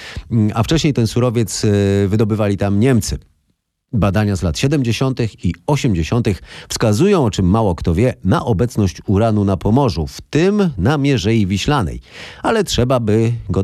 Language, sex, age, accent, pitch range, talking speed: Polish, male, 40-59, native, 90-125 Hz, 145 wpm